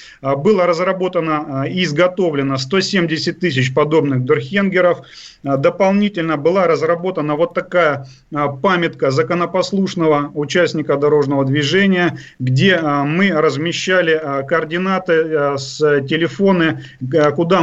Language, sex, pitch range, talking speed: Russian, male, 150-180 Hz, 85 wpm